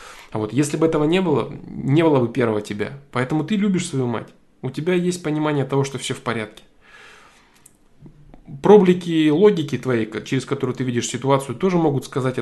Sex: male